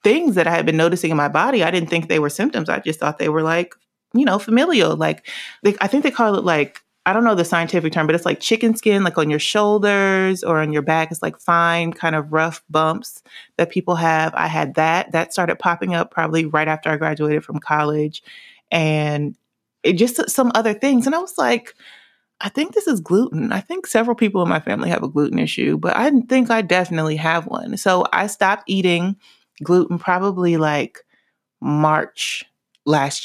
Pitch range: 155-195 Hz